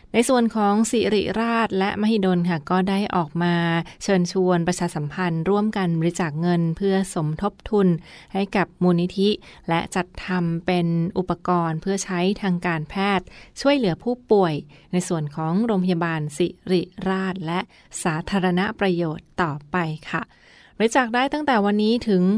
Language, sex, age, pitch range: Thai, female, 20-39, 175-200 Hz